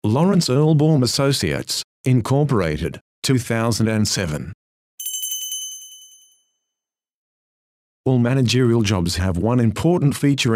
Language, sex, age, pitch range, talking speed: English, male, 50-69, 105-135 Hz, 70 wpm